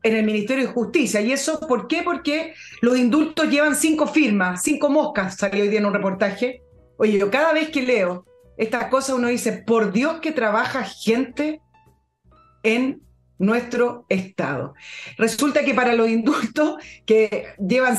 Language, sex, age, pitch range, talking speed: Spanish, female, 40-59, 215-280 Hz, 160 wpm